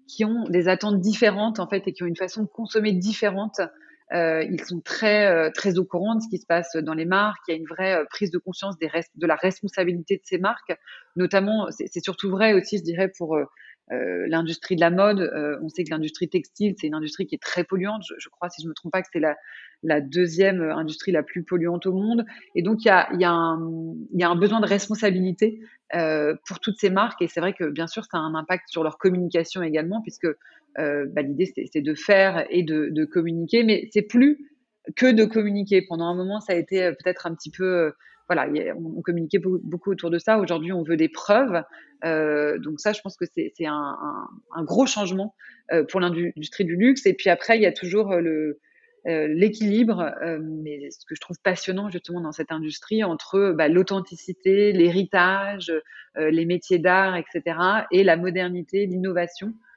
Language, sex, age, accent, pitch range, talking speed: English, female, 30-49, French, 165-200 Hz, 220 wpm